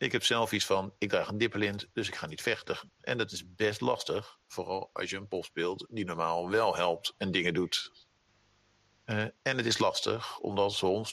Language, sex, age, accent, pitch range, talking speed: Dutch, male, 50-69, Dutch, 95-115 Hz, 210 wpm